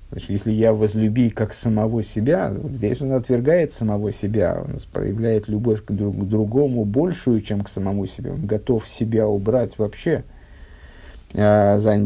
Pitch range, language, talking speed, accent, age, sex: 105-125 Hz, Russian, 145 wpm, native, 50-69, male